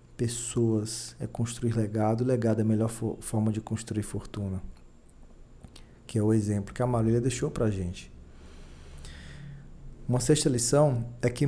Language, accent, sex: Portuguese, Brazilian, male